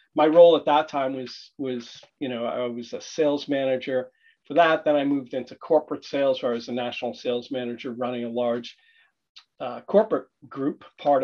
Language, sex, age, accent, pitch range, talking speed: English, male, 40-59, American, 130-175 Hz, 190 wpm